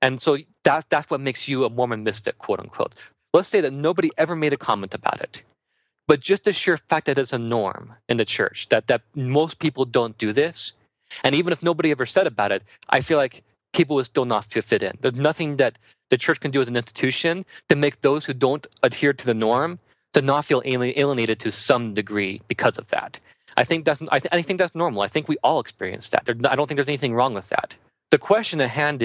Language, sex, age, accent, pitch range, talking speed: English, male, 30-49, American, 120-155 Hz, 235 wpm